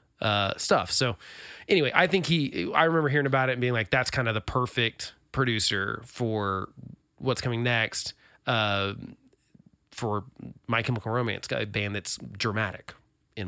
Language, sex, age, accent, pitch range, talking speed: English, male, 30-49, American, 105-140 Hz, 155 wpm